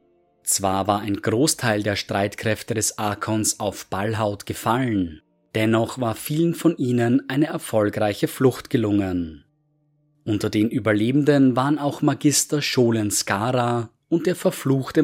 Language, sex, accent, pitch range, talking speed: German, male, German, 100-140 Hz, 125 wpm